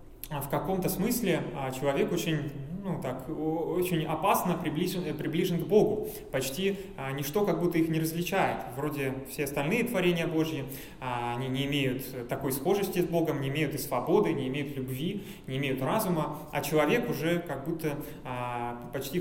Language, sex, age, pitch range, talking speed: Russian, male, 20-39, 135-170 Hz, 145 wpm